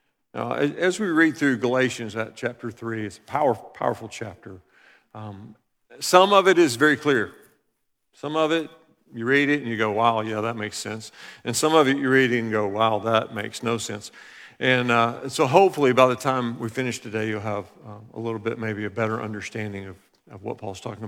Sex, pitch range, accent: male, 115-155 Hz, American